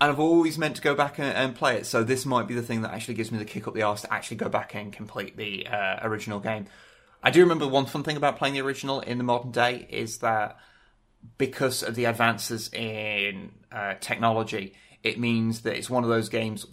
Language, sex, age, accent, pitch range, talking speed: English, male, 30-49, British, 110-120 Hz, 235 wpm